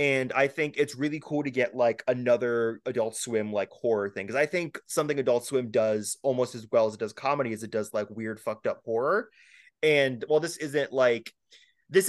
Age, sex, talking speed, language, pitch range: 20-39, male, 215 wpm, English, 120-160 Hz